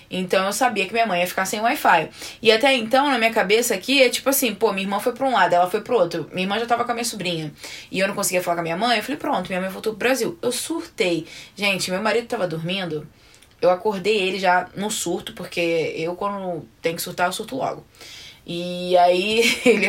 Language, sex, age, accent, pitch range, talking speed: Portuguese, female, 20-39, Brazilian, 170-225 Hz, 245 wpm